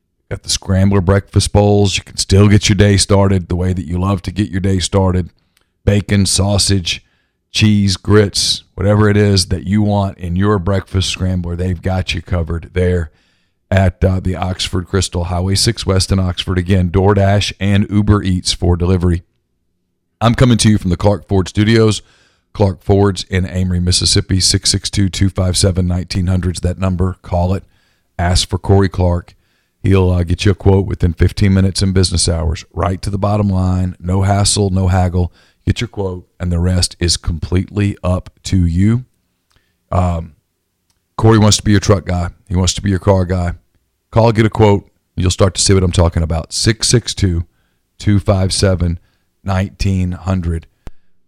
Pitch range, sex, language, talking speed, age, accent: 90-100 Hz, male, English, 170 wpm, 40-59, American